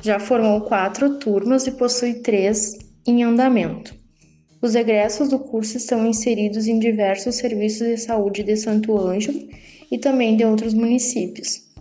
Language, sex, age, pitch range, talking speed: Portuguese, female, 20-39, 205-235 Hz, 140 wpm